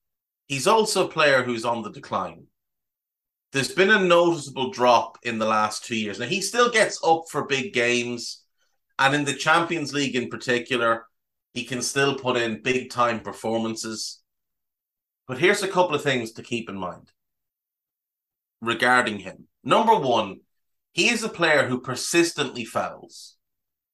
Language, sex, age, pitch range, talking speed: English, male, 30-49, 115-150 Hz, 155 wpm